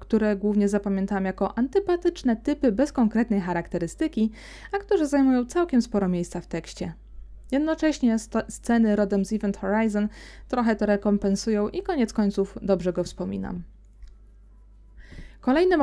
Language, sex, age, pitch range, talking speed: Polish, female, 20-39, 185-235 Hz, 130 wpm